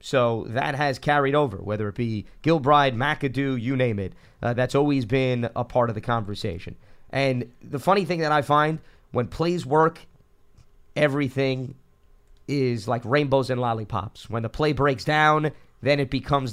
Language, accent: English, American